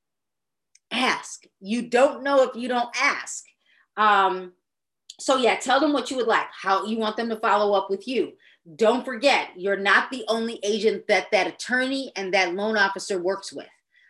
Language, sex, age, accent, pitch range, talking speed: English, female, 30-49, American, 195-250 Hz, 180 wpm